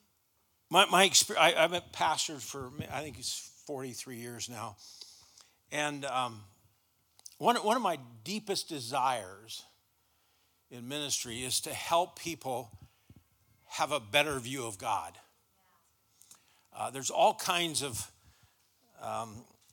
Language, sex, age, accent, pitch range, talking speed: English, male, 50-69, American, 125-170 Hz, 115 wpm